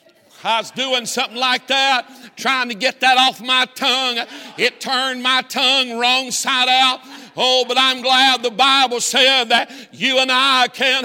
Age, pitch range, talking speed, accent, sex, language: 60-79, 235-260 Hz, 175 wpm, American, male, English